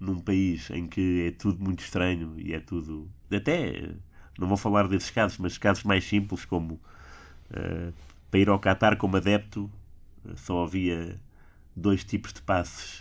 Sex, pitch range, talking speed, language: male, 80-100 Hz, 165 wpm, Portuguese